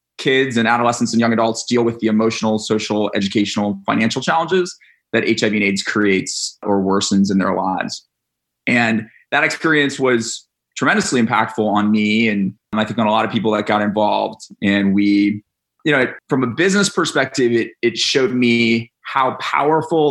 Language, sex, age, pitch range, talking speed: English, male, 20-39, 105-125 Hz, 170 wpm